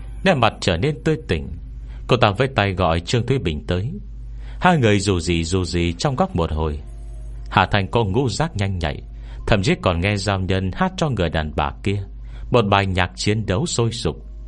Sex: male